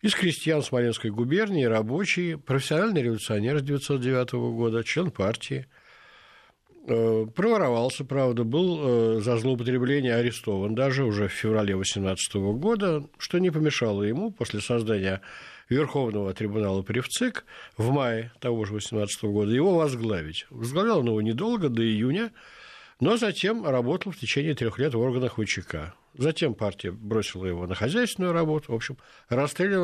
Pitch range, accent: 105-150 Hz, native